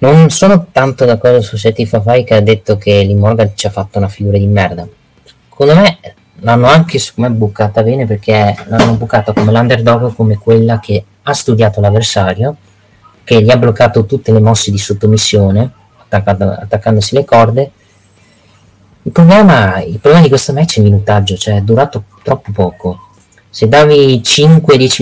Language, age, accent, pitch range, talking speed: Italian, 20-39, native, 105-120 Hz, 165 wpm